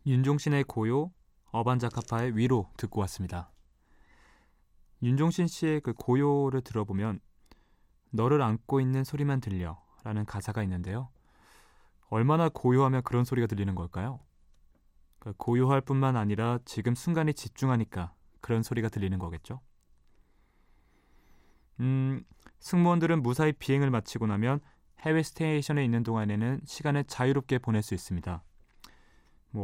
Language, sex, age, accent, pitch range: Korean, male, 20-39, native, 100-140 Hz